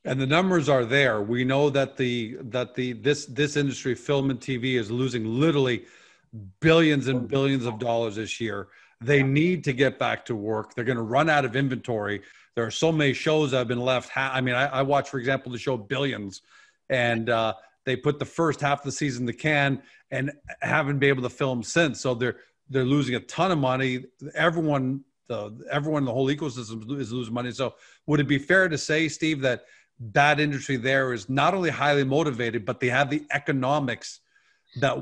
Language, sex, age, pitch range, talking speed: English, male, 40-59, 120-145 Hz, 205 wpm